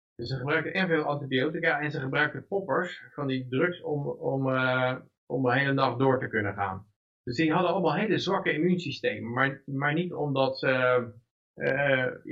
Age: 50-69